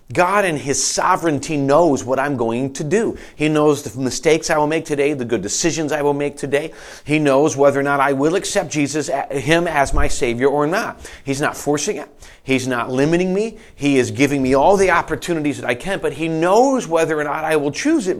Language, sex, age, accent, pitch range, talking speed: English, male, 40-59, American, 140-190 Hz, 225 wpm